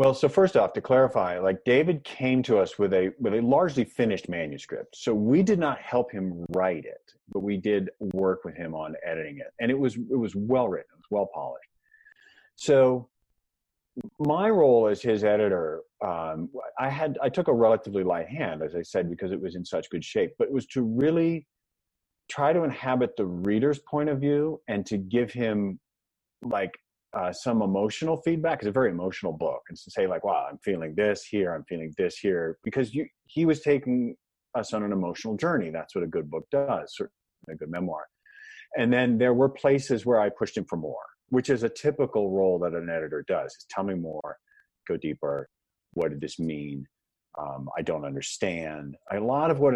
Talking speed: 205 wpm